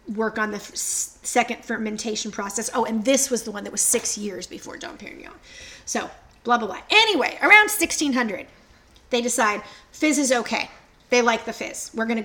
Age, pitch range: 30-49, 215-255 Hz